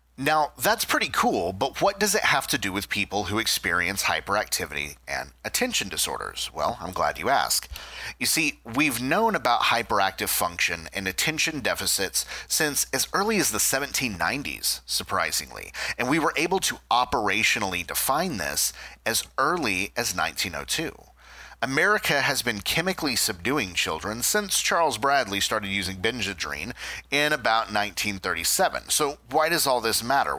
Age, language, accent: 30-49, English, American